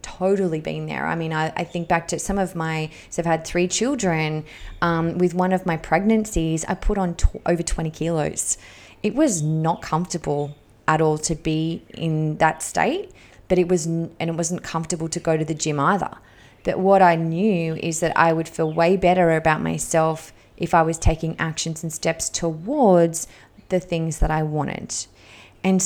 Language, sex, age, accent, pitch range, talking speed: English, female, 20-39, Australian, 155-180 Hz, 190 wpm